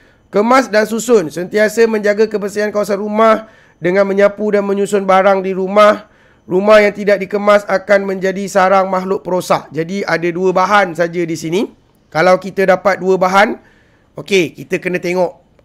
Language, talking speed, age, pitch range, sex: Malay, 155 wpm, 30-49, 170-210 Hz, male